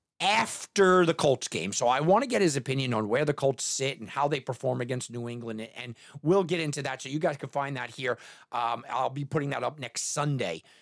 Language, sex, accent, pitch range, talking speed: English, male, American, 140-215 Hz, 240 wpm